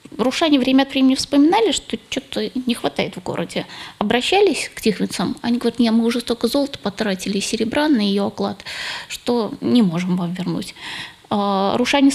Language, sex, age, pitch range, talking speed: Russian, female, 20-39, 200-265 Hz, 165 wpm